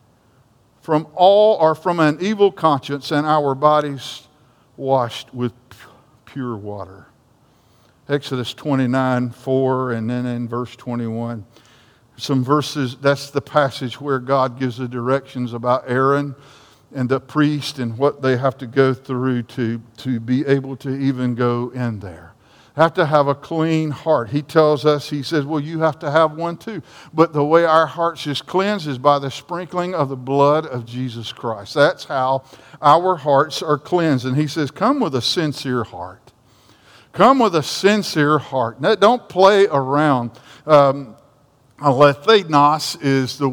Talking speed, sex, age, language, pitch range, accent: 160 wpm, male, 50-69, English, 125-150 Hz, American